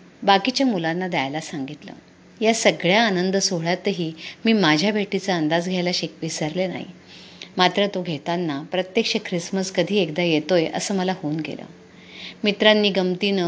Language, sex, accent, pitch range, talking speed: Marathi, female, native, 165-195 Hz, 135 wpm